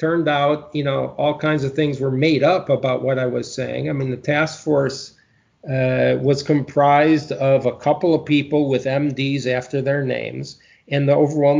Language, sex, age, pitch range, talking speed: English, male, 40-59, 135-155 Hz, 190 wpm